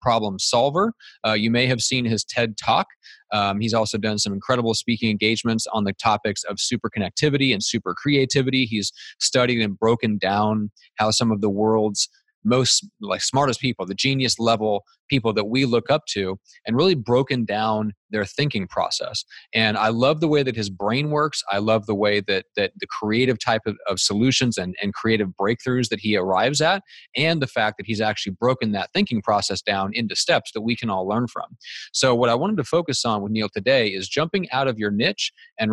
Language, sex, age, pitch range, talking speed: English, male, 30-49, 105-125 Hz, 205 wpm